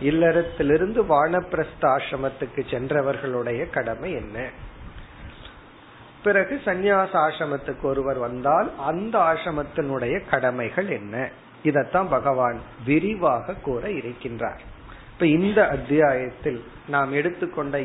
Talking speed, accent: 45 wpm, native